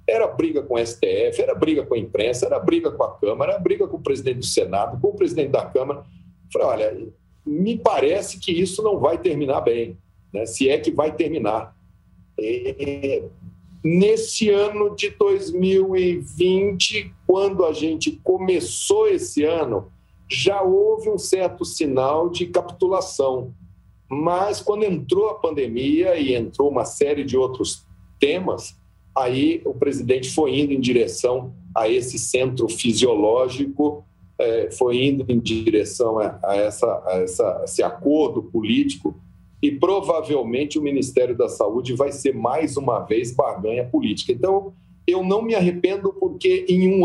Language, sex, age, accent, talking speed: Portuguese, male, 50-69, Brazilian, 150 wpm